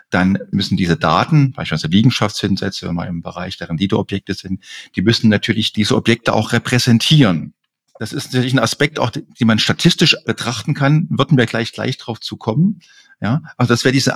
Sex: male